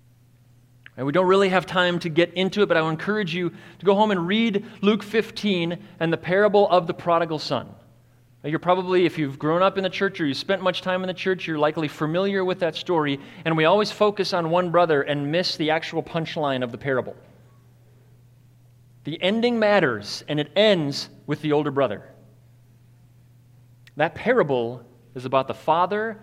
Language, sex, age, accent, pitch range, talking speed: English, male, 30-49, American, 125-195 Hz, 190 wpm